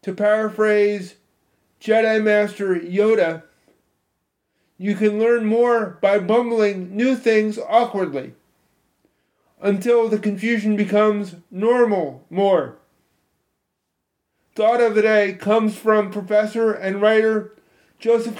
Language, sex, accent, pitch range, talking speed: English, male, American, 200-225 Hz, 100 wpm